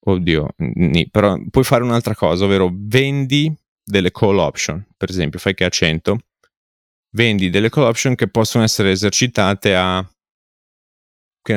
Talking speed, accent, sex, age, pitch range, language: 150 wpm, native, male, 30-49, 85-110 Hz, Italian